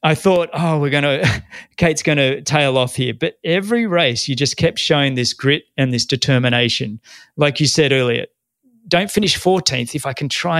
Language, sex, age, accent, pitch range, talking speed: English, male, 30-49, Australian, 130-165 Hz, 185 wpm